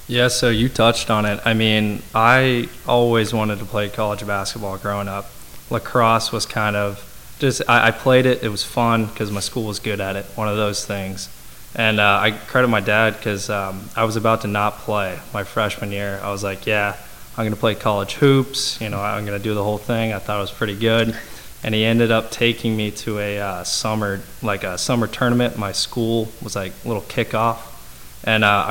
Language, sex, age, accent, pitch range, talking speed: English, male, 20-39, American, 100-115 Hz, 215 wpm